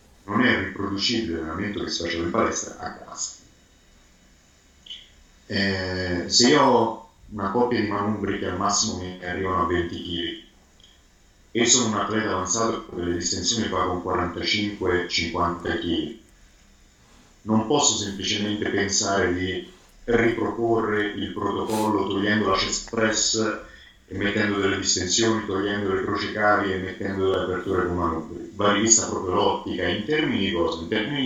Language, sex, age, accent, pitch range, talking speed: Italian, male, 50-69, native, 90-110 Hz, 145 wpm